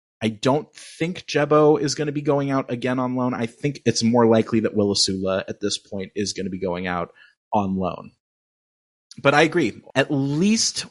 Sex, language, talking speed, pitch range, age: male, English, 200 wpm, 115-145 Hz, 30-49